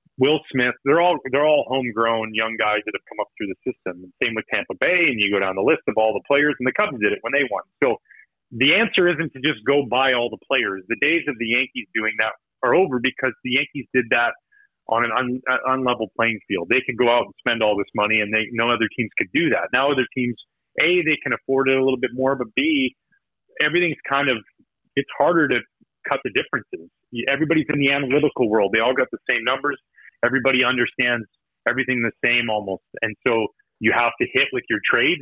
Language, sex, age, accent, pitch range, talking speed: English, male, 30-49, American, 110-135 Hz, 235 wpm